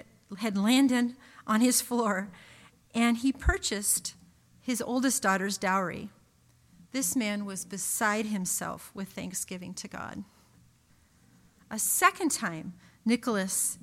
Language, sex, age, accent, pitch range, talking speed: English, female, 40-59, American, 185-245 Hz, 110 wpm